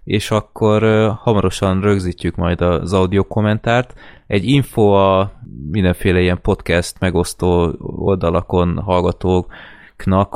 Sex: male